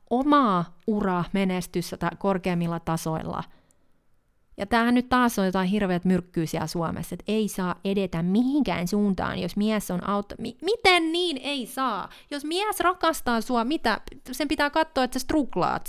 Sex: female